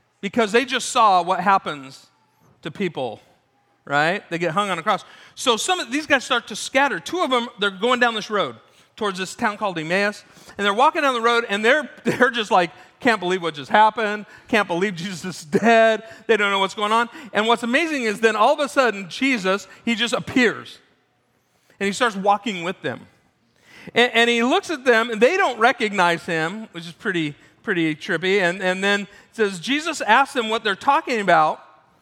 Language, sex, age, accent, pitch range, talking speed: English, male, 40-59, American, 195-250 Hz, 205 wpm